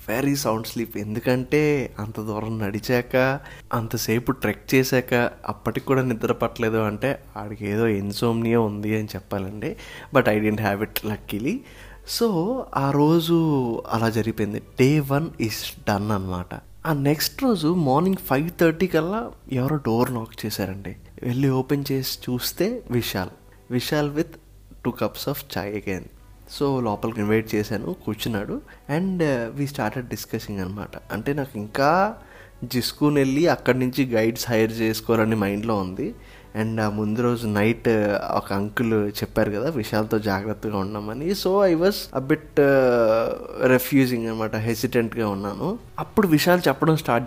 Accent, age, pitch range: native, 20-39, 110-140 Hz